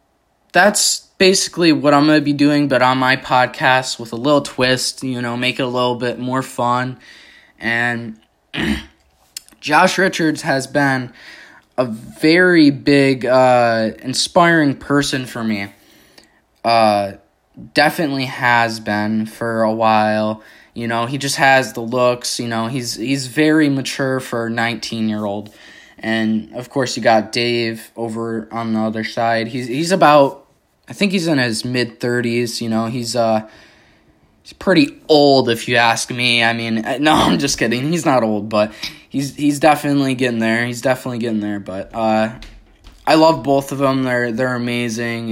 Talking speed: 160 wpm